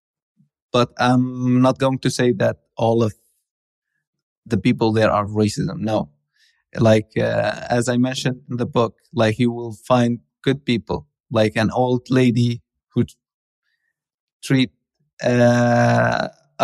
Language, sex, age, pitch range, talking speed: English, male, 20-39, 115-135 Hz, 130 wpm